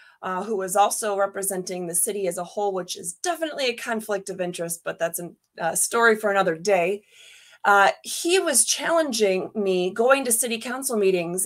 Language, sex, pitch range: English, female, 190-235 Hz